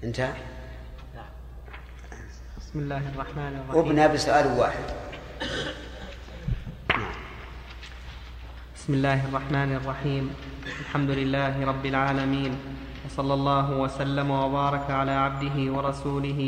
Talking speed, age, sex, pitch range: 75 wpm, 30-49, male, 135-145 Hz